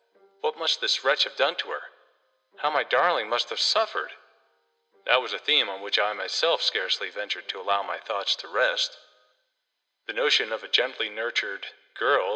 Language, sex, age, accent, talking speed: English, male, 40-59, American, 180 wpm